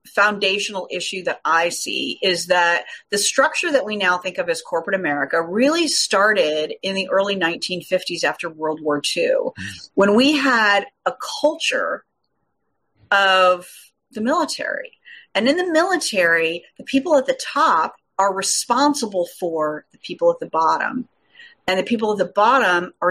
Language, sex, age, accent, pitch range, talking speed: English, female, 40-59, American, 170-235 Hz, 155 wpm